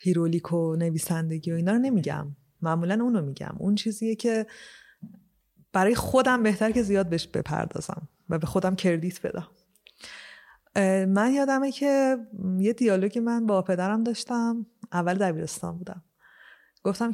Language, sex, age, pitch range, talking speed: Persian, female, 30-49, 175-230 Hz, 135 wpm